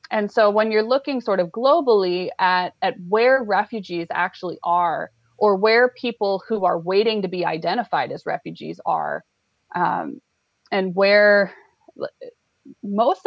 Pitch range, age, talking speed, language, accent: 185-225 Hz, 20-39, 135 wpm, English, American